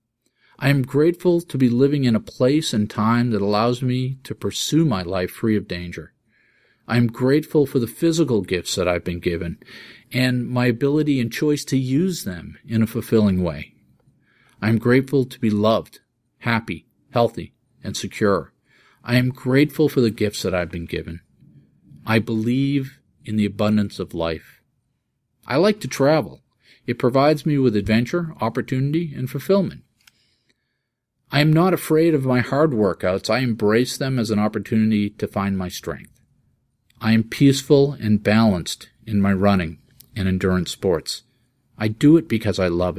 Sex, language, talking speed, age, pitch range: male, English, 165 wpm, 40-59, 105-130 Hz